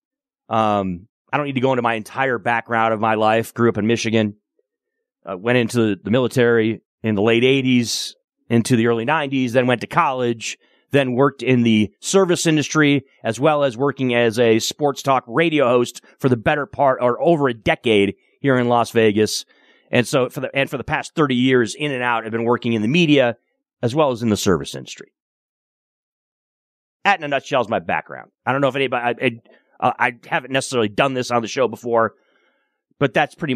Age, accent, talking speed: 30-49, American, 205 wpm